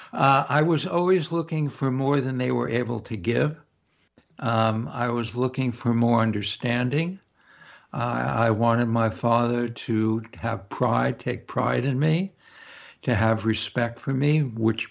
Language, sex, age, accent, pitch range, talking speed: English, male, 60-79, American, 110-135 Hz, 155 wpm